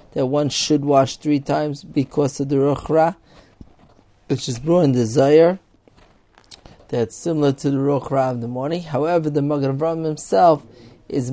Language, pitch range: English, 135-160 Hz